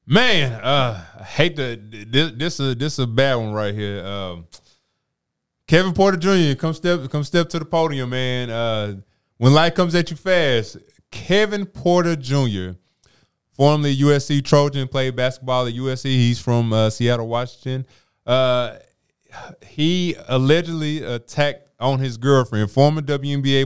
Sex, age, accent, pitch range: male, 20-39, American, 105-140 Hz